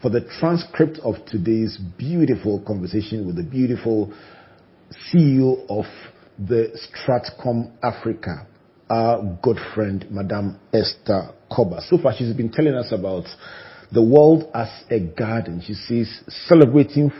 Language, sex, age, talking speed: English, male, 40-59, 125 wpm